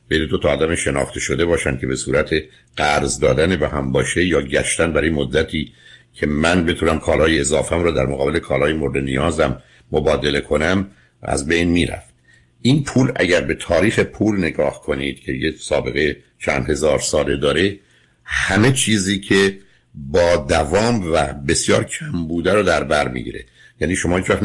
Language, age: Persian, 60-79